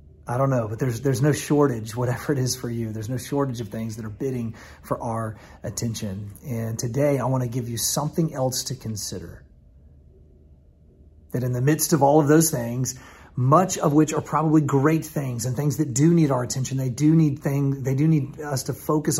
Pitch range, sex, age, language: 105-140 Hz, male, 30-49, English